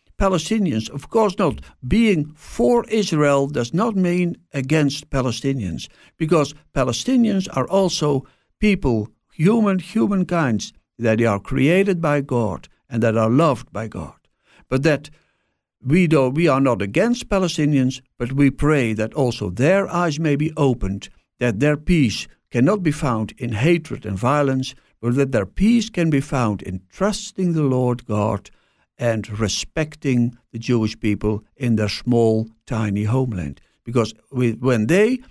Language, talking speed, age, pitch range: English, 145 wpm, 60-79, 115-170 Hz